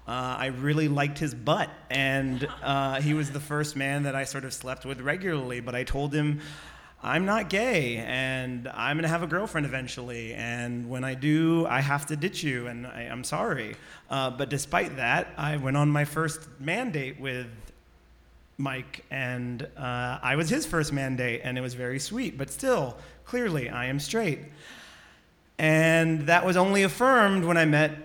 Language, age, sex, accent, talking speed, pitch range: English, 30-49, male, American, 185 wpm, 125-160 Hz